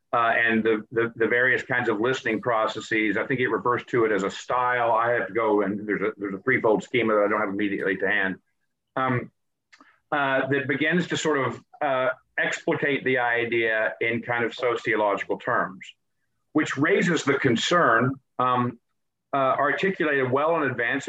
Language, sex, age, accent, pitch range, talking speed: English, male, 50-69, American, 110-135 Hz, 180 wpm